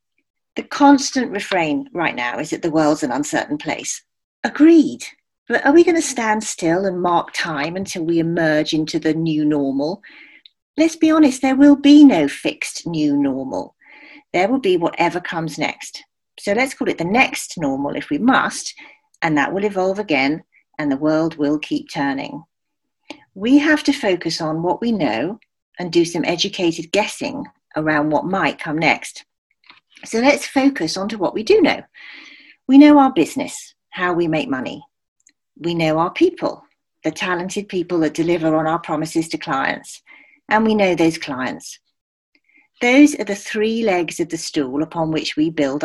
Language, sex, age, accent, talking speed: English, female, 40-59, British, 175 wpm